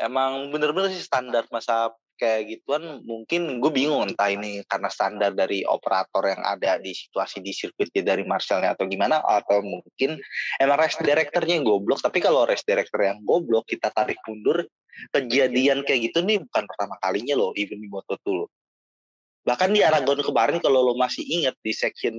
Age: 20-39